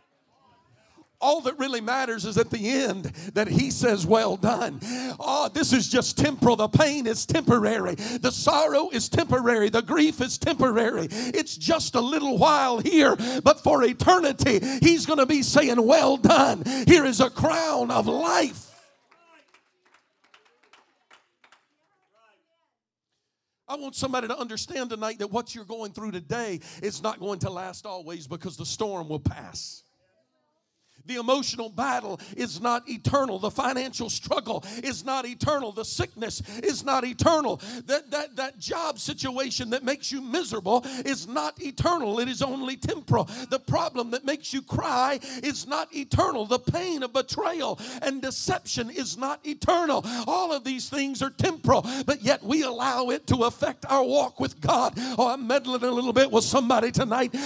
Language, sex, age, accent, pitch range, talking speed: English, male, 50-69, American, 235-280 Hz, 160 wpm